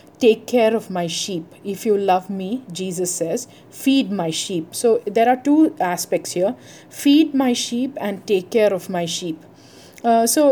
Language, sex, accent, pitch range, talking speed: English, female, Indian, 180-230 Hz, 175 wpm